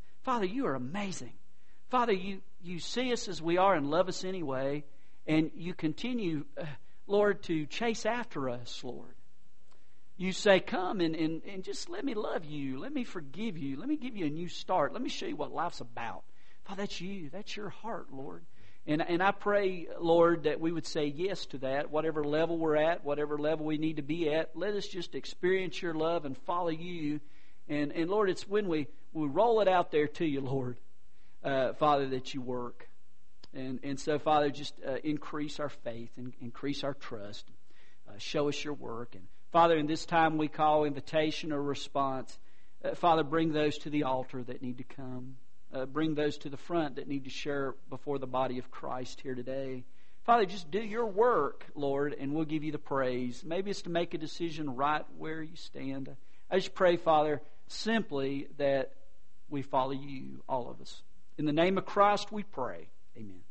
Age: 50-69